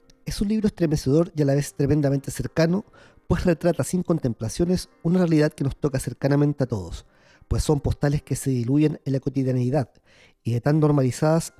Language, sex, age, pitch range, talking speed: Spanish, male, 40-59, 130-180 Hz, 180 wpm